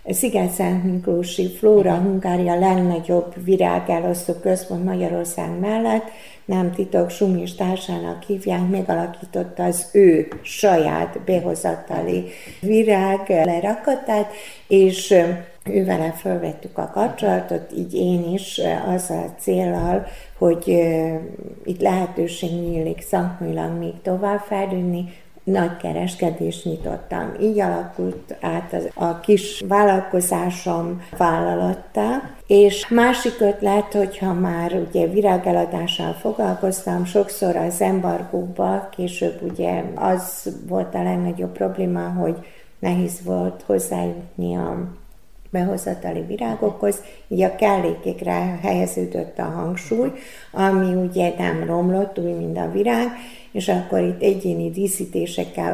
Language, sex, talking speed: Hungarian, female, 100 wpm